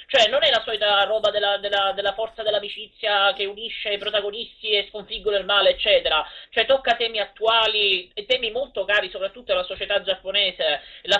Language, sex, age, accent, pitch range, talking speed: Italian, male, 30-49, native, 210-290 Hz, 175 wpm